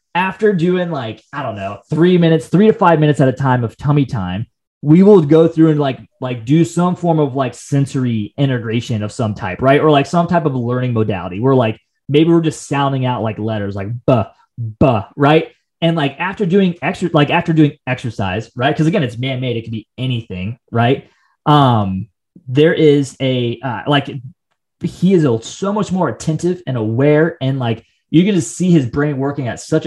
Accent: American